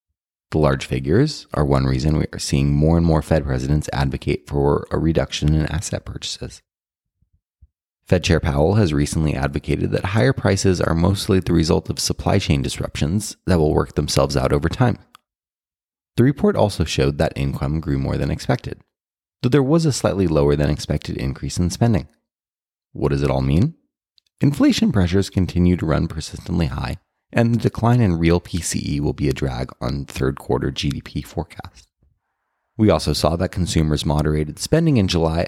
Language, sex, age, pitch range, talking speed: English, male, 30-49, 75-105 Hz, 175 wpm